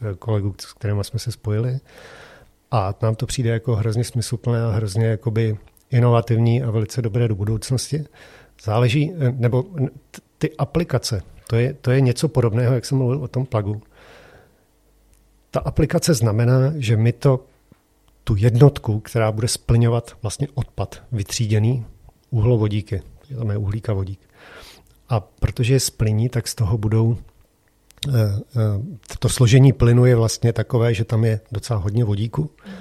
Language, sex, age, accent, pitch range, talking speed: Czech, male, 40-59, native, 110-130 Hz, 140 wpm